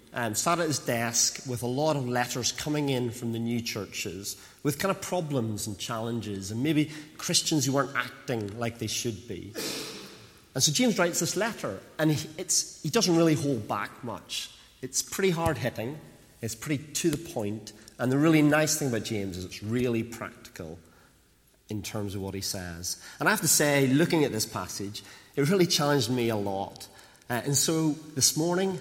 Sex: male